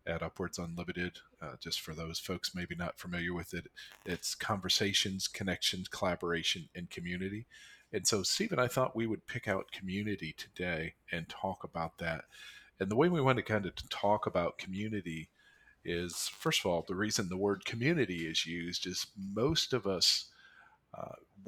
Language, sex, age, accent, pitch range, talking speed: English, male, 40-59, American, 85-105 Hz, 170 wpm